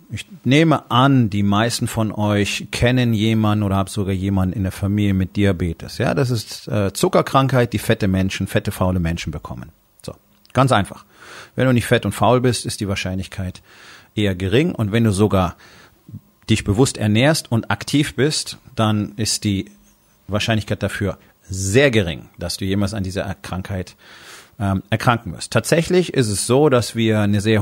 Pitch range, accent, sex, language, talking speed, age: 100-125 Hz, German, male, German, 170 wpm, 40-59